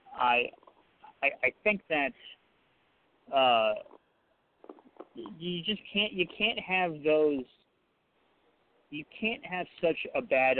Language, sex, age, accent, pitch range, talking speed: English, male, 30-49, American, 125-210 Hz, 100 wpm